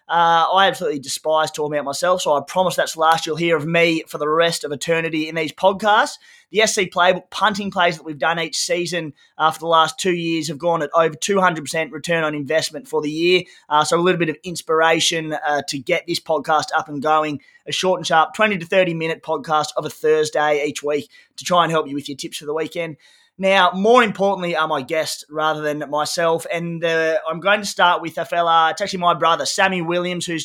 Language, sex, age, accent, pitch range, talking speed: English, male, 20-39, Australian, 155-175 Hz, 235 wpm